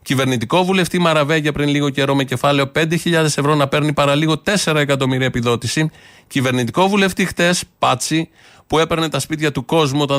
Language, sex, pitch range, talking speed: Greek, male, 120-145 Hz, 165 wpm